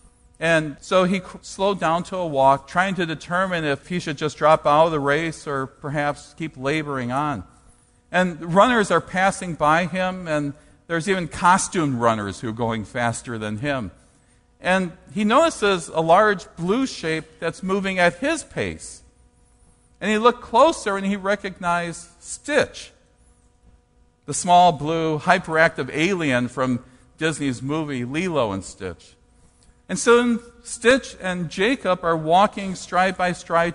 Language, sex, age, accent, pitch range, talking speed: English, male, 50-69, American, 140-190 Hz, 150 wpm